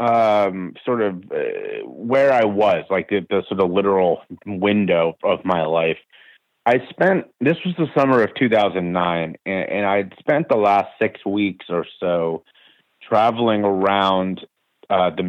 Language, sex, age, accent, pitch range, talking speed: English, male, 30-49, American, 90-110 Hz, 155 wpm